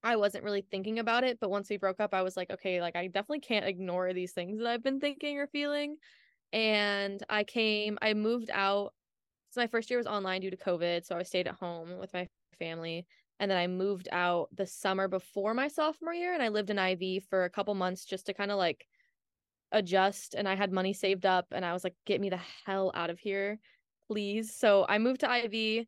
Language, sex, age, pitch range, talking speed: English, female, 10-29, 185-225 Hz, 230 wpm